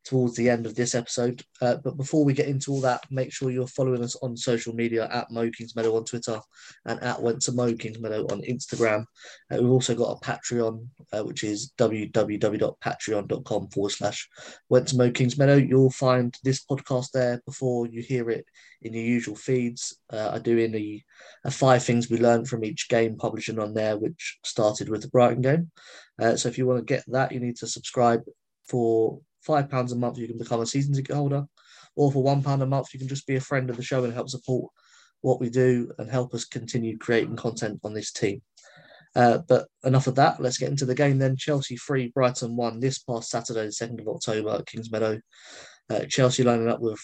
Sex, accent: male, British